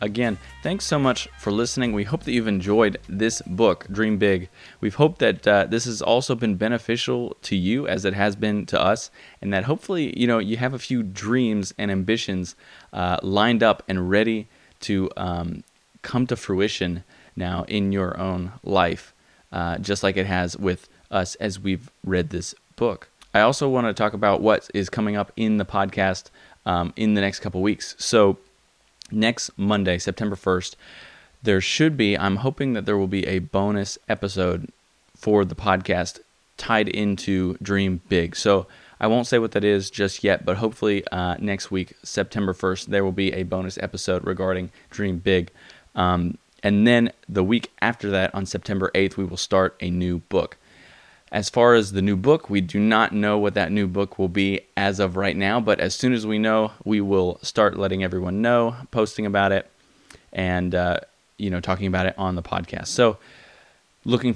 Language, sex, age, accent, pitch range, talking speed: English, male, 20-39, American, 95-110 Hz, 190 wpm